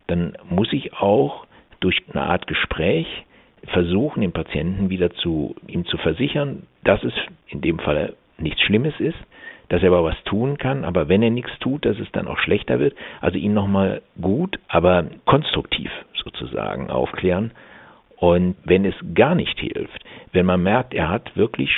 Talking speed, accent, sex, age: 170 wpm, German, male, 60-79